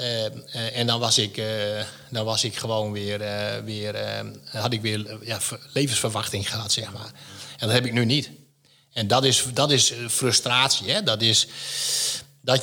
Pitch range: 105-135 Hz